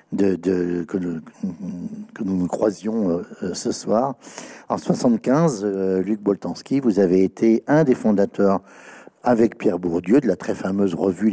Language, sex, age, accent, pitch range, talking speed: French, male, 60-79, French, 95-135 Hz, 160 wpm